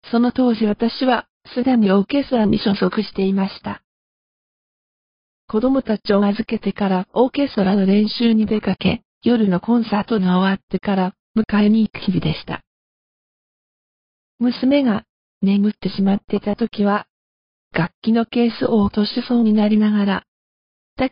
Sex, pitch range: female, 195-230 Hz